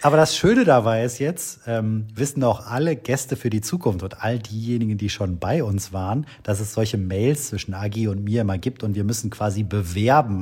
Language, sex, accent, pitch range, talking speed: German, male, German, 95-115 Hz, 215 wpm